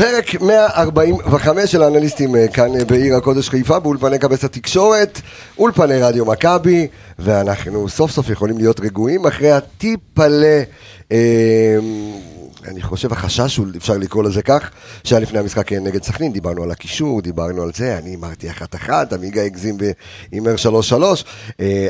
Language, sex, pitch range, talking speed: Hebrew, male, 105-145 Hz, 140 wpm